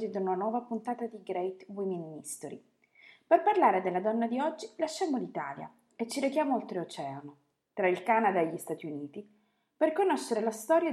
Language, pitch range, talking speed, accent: Italian, 165-230 Hz, 170 wpm, native